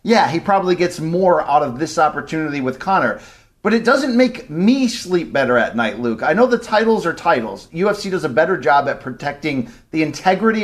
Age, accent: 40-59, American